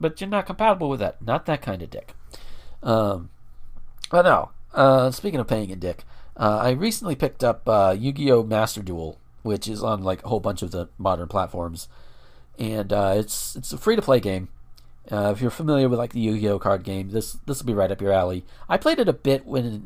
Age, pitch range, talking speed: 40-59, 100-130 Hz, 215 wpm